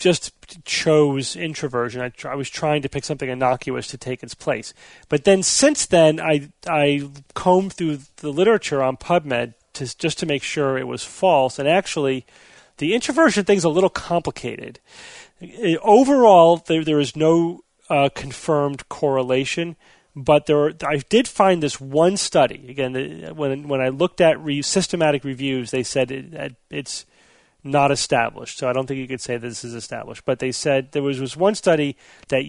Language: English